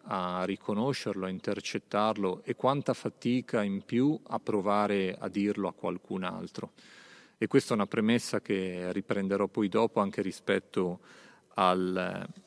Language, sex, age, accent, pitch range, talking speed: Italian, male, 40-59, native, 95-115 Hz, 135 wpm